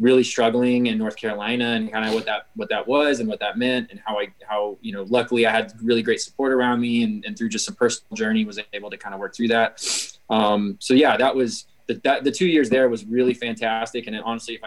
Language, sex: English, male